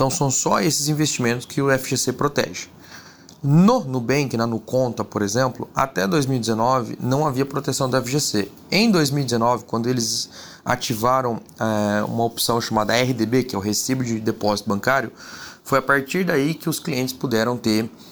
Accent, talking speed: Brazilian, 160 wpm